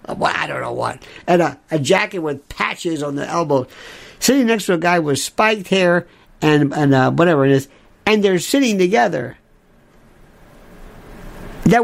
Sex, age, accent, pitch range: male, 60-79, American, 155-230 Hz